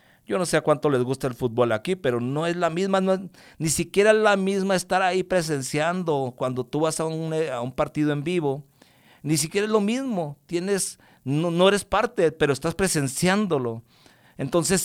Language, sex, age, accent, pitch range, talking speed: English, male, 50-69, Mexican, 135-170 Hz, 195 wpm